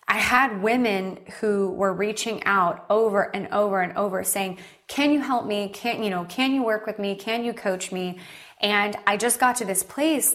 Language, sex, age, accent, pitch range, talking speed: English, female, 20-39, American, 190-225 Hz, 210 wpm